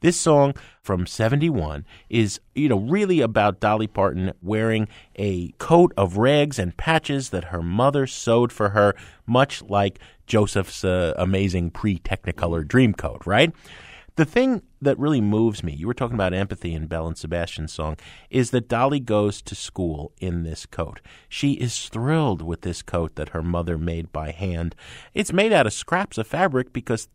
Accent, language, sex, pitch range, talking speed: American, English, male, 90-125 Hz, 170 wpm